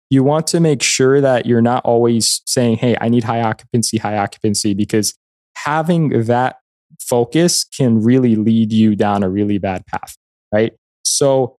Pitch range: 110-135 Hz